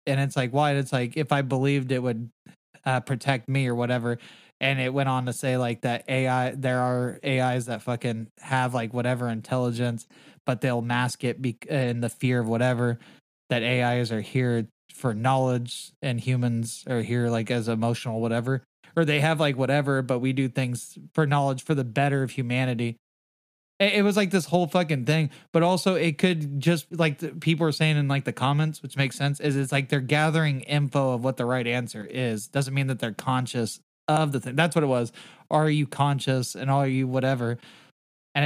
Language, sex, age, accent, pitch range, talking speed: English, male, 20-39, American, 125-145 Hz, 200 wpm